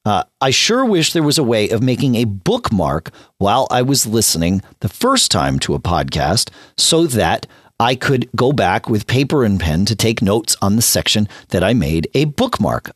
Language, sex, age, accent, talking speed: English, male, 40-59, American, 200 wpm